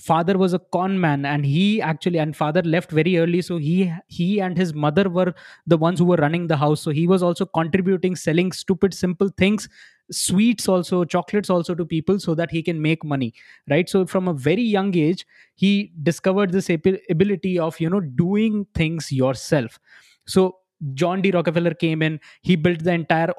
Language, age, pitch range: Hindi, 20-39, 150-185 Hz